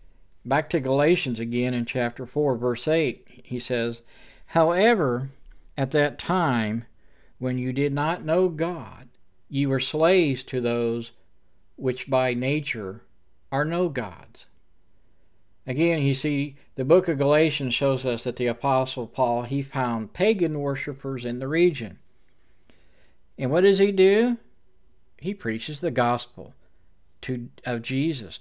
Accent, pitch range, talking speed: American, 115-150 Hz, 135 wpm